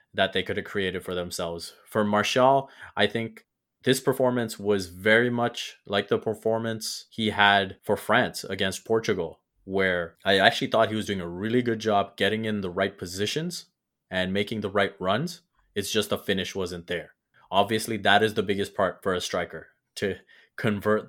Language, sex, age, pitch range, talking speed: English, male, 20-39, 95-115 Hz, 180 wpm